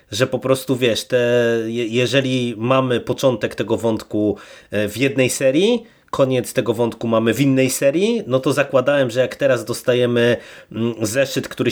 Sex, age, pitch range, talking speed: male, 30-49, 115-145 Hz, 145 wpm